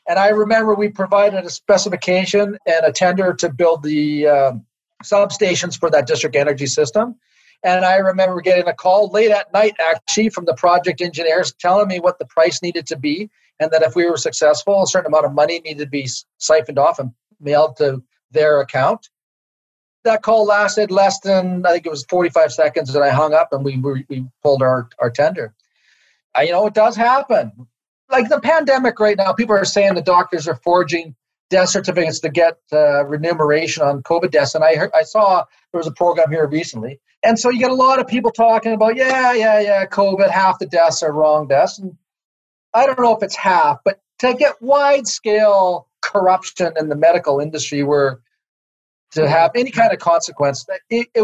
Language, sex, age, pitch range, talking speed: English, male, 40-59, 150-205 Hz, 200 wpm